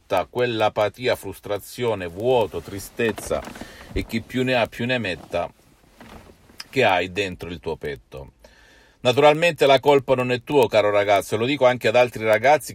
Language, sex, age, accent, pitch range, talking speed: Italian, male, 50-69, native, 100-130 Hz, 150 wpm